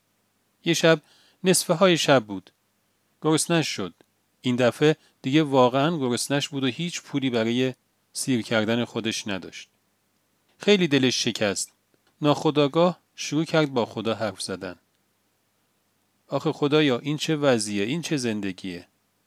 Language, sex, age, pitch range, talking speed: Persian, male, 40-59, 110-155 Hz, 125 wpm